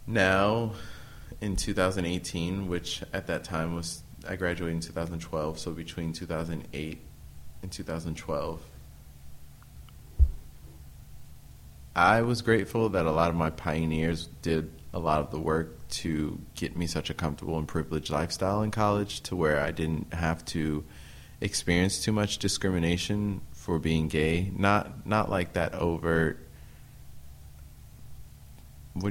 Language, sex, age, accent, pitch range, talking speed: English, male, 20-39, American, 75-90 Hz, 130 wpm